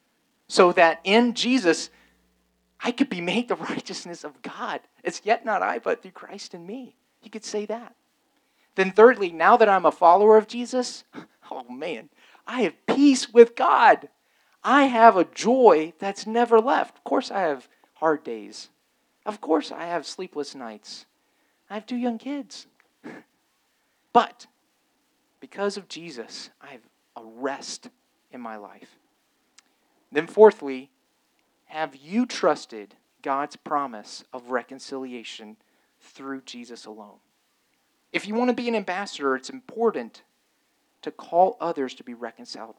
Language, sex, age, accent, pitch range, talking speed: English, male, 40-59, American, 140-235 Hz, 145 wpm